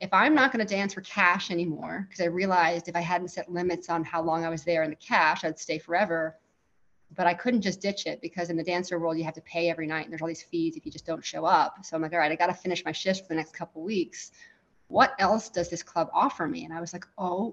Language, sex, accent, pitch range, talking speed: English, female, American, 165-200 Hz, 290 wpm